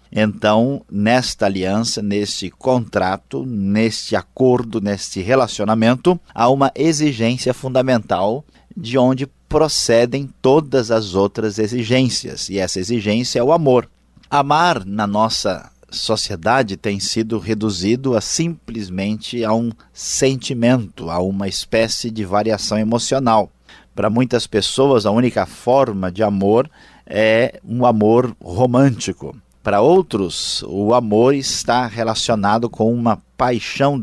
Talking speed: 115 wpm